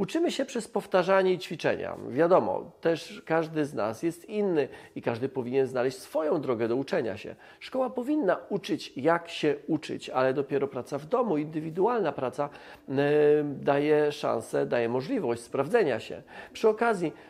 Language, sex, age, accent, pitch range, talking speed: Polish, male, 40-59, native, 125-175 Hz, 150 wpm